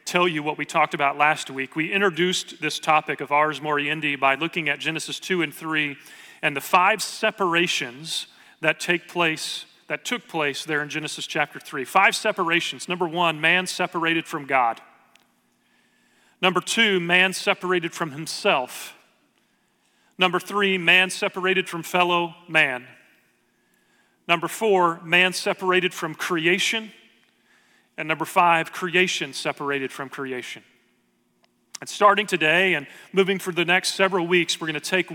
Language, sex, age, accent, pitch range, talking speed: English, male, 40-59, American, 150-185 Hz, 145 wpm